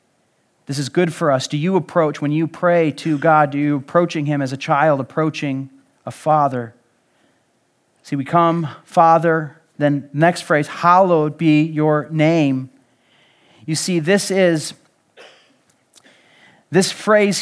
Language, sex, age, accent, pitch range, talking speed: English, male, 40-59, American, 155-200 Hz, 140 wpm